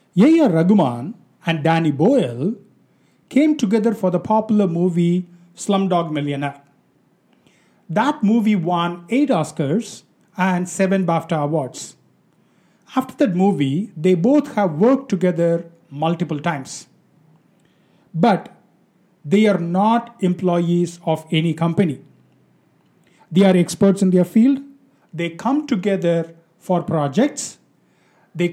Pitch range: 165-210 Hz